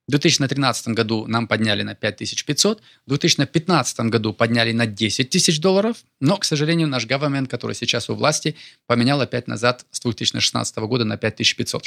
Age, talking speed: 20-39, 160 wpm